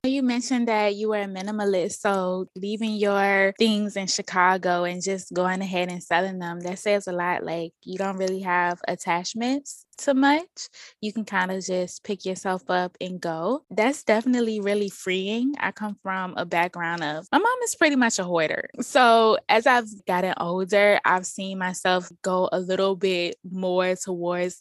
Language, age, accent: English, 10-29, American